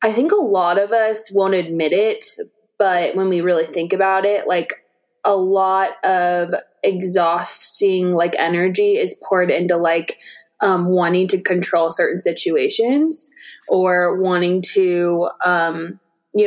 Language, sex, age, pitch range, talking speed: English, female, 20-39, 180-240 Hz, 140 wpm